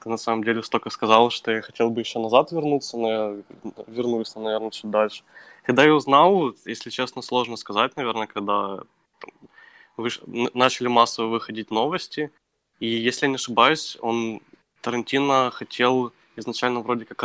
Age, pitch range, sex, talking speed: 20-39, 110-125 Hz, male, 155 wpm